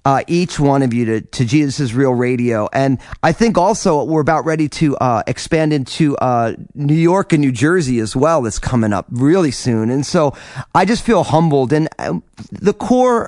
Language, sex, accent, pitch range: English, male, American, 130-170 Hz